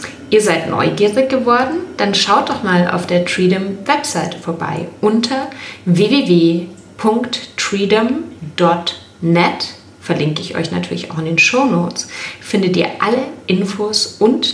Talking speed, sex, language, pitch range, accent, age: 115 wpm, female, German, 165-215 Hz, German, 30-49